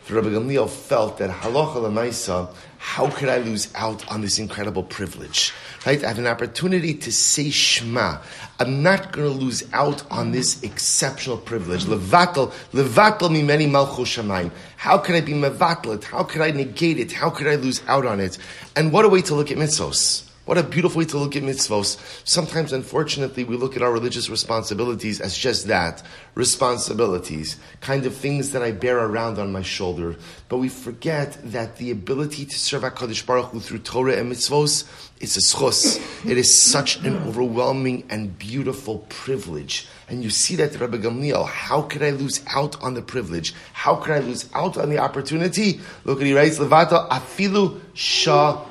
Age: 30-49